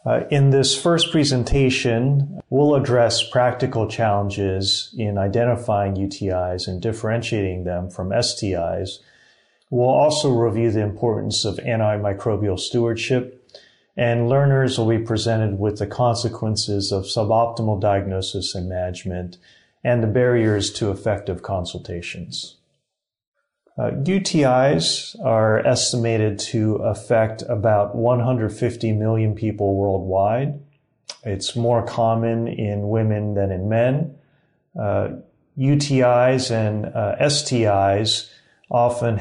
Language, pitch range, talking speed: English, 100-120 Hz, 105 wpm